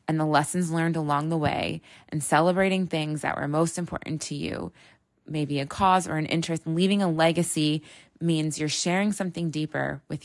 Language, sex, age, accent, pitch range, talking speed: English, female, 20-39, American, 155-185 Hz, 180 wpm